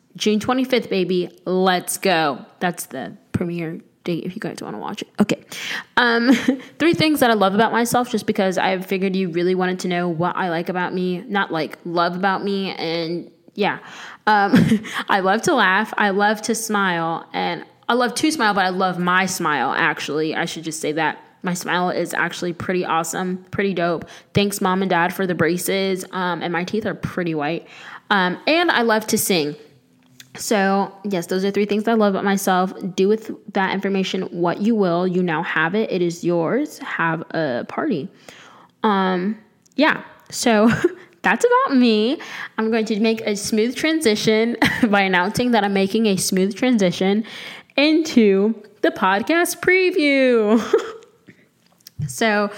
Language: English